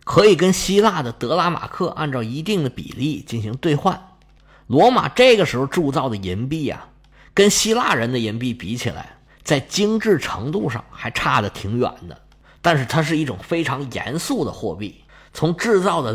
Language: Chinese